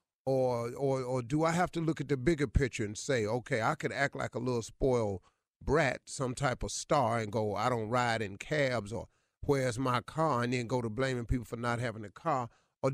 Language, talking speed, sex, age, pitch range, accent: English, 230 wpm, male, 30-49, 125-160 Hz, American